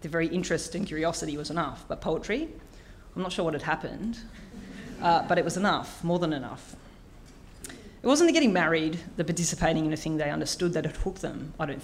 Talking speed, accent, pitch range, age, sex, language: 210 wpm, Australian, 150-180 Hz, 30-49, female, English